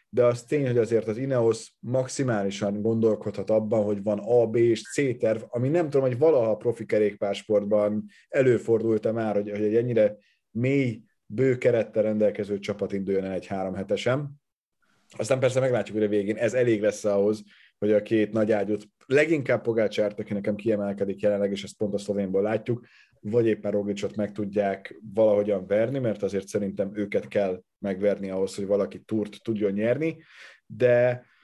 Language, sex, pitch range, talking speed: Hungarian, male, 105-125 Hz, 165 wpm